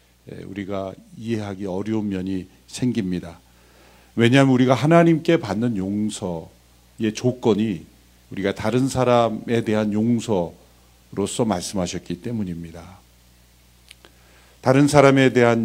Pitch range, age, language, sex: 85-125 Hz, 50-69, Korean, male